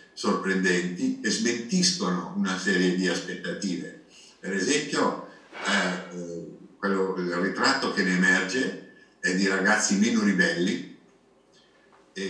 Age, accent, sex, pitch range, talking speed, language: 60-79, native, male, 90-100 Hz, 105 wpm, Italian